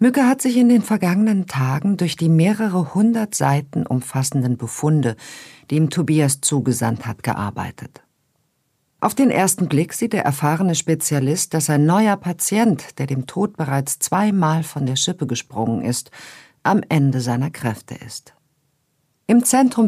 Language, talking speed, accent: German, 150 wpm, German